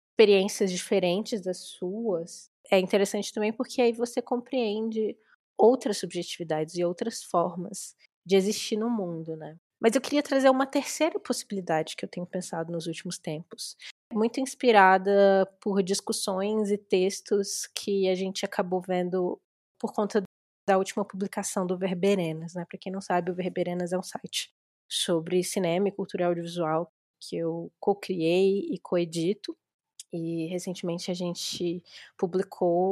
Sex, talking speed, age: female, 145 wpm, 20-39